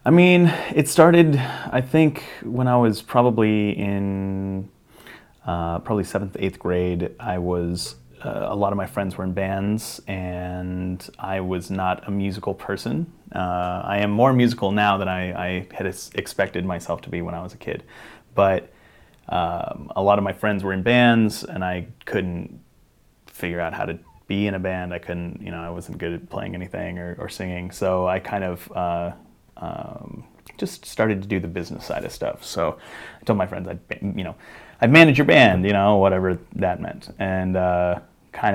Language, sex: English, male